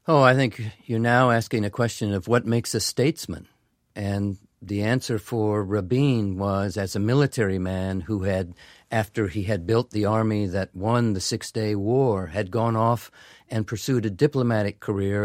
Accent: American